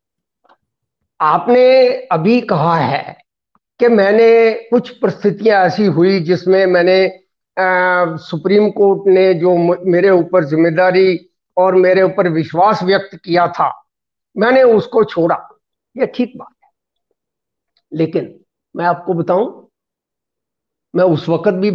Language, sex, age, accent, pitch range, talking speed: Hindi, male, 50-69, native, 185-240 Hz, 115 wpm